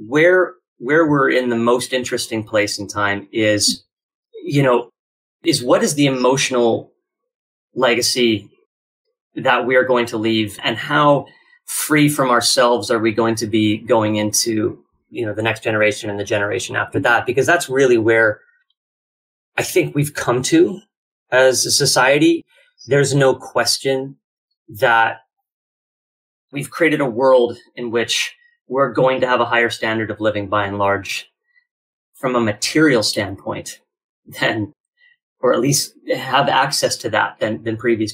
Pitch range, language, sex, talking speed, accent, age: 115-155 Hz, English, male, 150 wpm, American, 30-49